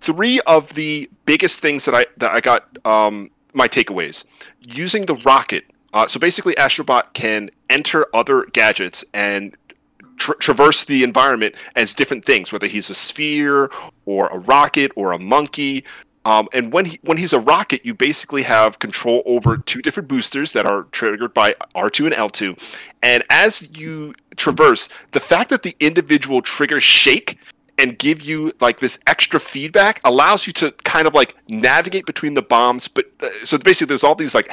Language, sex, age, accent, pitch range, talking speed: English, male, 30-49, American, 135-205 Hz, 180 wpm